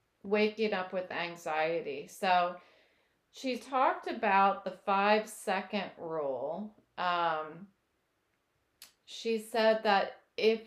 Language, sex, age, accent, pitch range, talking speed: English, female, 30-49, American, 175-215 Hz, 90 wpm